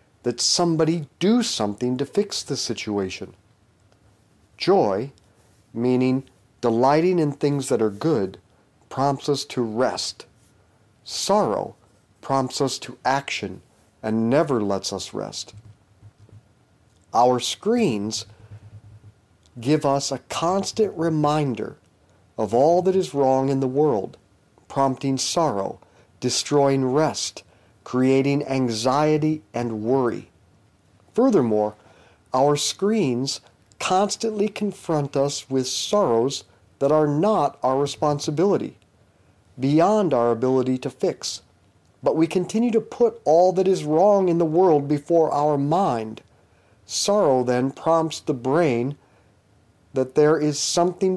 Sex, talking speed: male, 110 wpm